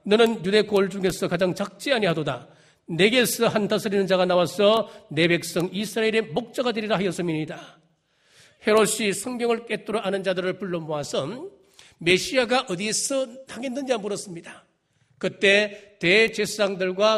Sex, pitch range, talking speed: male, 180-245 Hz, 110 wpm